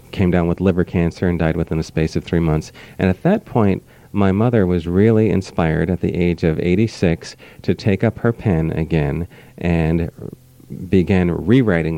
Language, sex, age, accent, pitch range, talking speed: English, male, 40-59, American, 80-95 Hz, 180 wpm